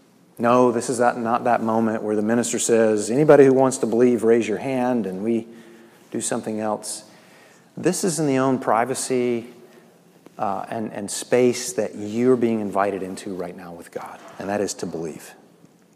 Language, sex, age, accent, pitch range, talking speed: English, male, 30-49, American, 115-145 Hz, 175 wpm